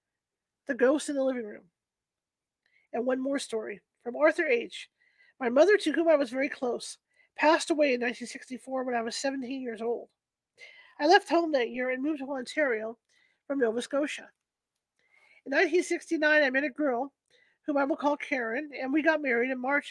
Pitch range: 245-315 Hz